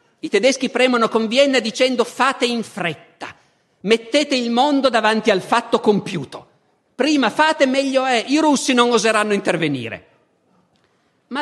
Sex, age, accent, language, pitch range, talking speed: male, 50-69, native, Italian, 170-230 Hz, 135 wpm